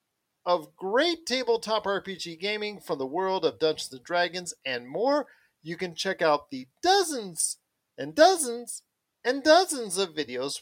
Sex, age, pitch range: male, 40-59, 155-240 Hz